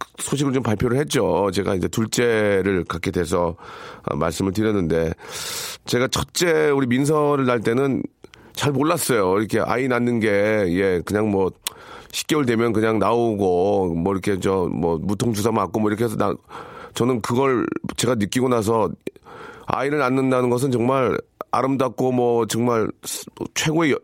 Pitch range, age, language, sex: 100-135 Hz, 40-59, Korean, male